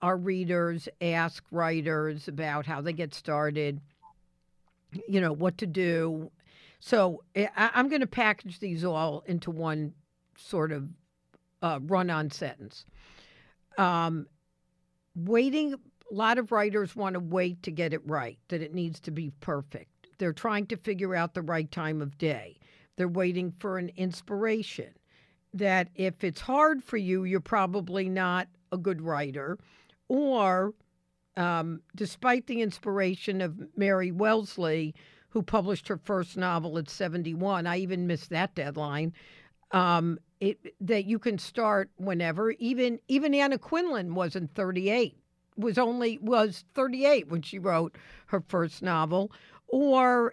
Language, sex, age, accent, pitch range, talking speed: English, female, 50-69, American, 160-210 Hz, 140 wpm